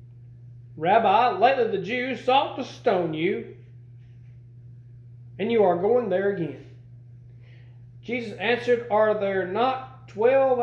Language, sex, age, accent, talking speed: English, male, 40-59, American, 115 wpm